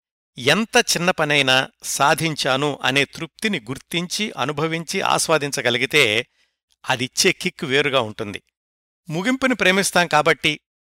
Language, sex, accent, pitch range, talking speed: Telugu, male, native, 125-170 Hz, 90 wpm